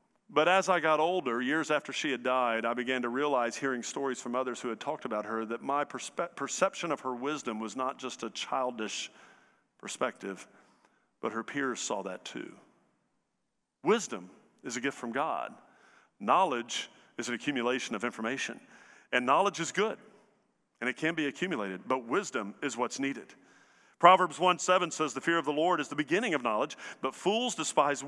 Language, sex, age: English, male, 50-69